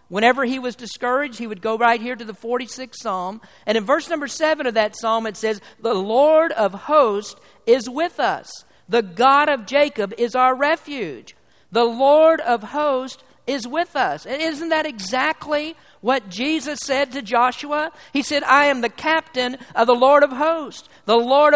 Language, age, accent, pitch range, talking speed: English, 50-69, American, 210-290 Hz, 185 wpm